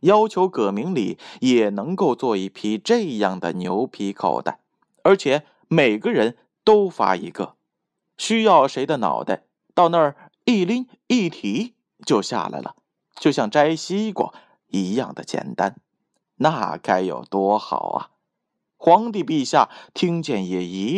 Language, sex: Chinese, male